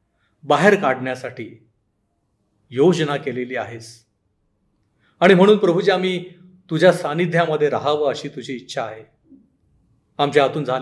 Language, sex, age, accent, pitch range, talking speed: Marathi, male, 40-59, native, 125-185 Hz, 85 wpm